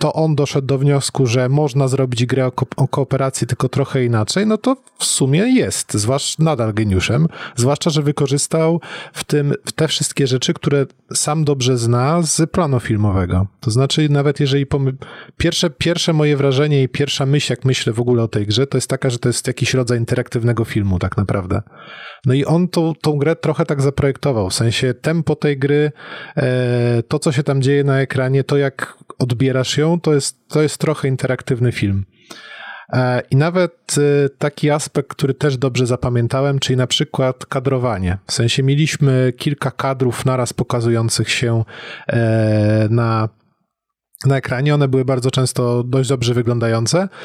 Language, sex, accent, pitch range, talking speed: Polish, male, native, 125-150 Hz, 165 wpm